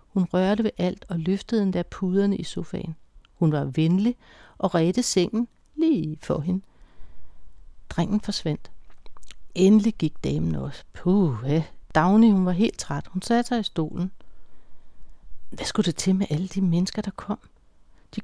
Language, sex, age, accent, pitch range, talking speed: Danish, female, 60-79, native, 160-215 Hz, 160 wpm